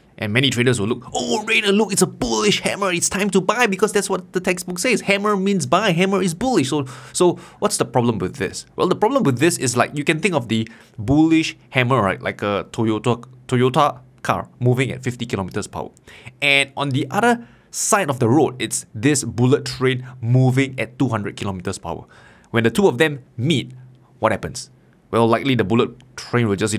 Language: English